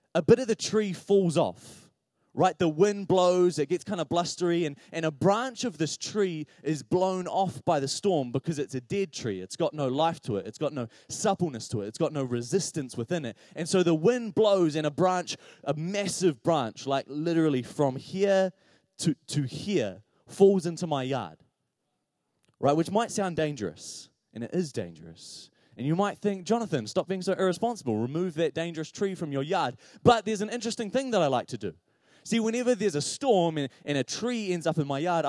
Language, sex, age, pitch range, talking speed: English, male, 20-39, 135-190 Hz, 210 wpm